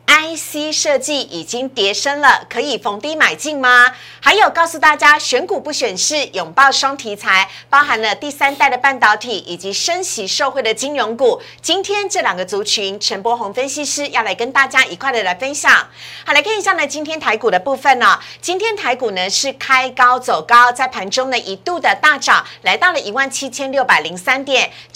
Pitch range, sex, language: 235-300 Hz, female, Chinese